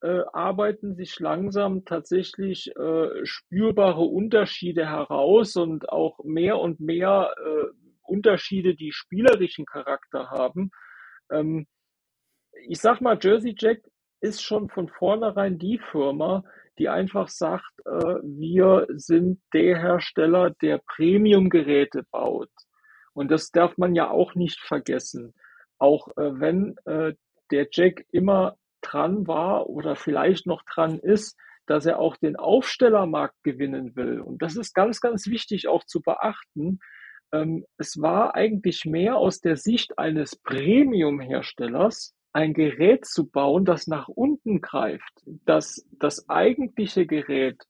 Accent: German